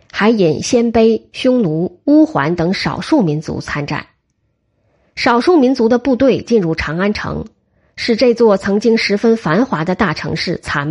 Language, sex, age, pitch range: Chinese, female, 20-39, 165-245 Hz